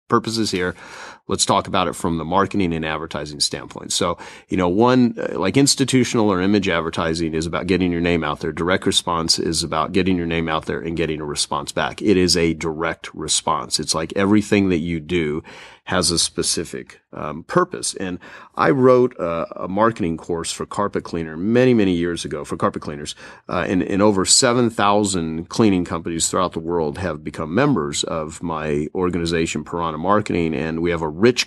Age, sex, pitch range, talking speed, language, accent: 30-49, male, 85-105 Hz, 190 wpm, English, American